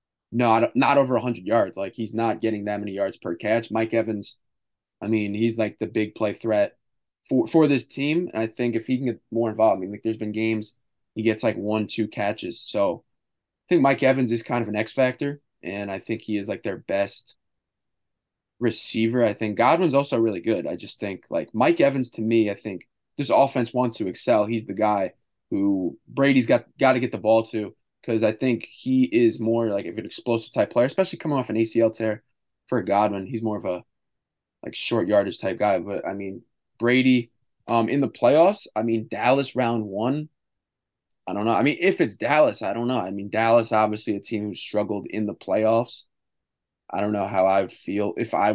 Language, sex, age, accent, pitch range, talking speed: English, male, 20-39, American, 105-120 Hz, 215 wpm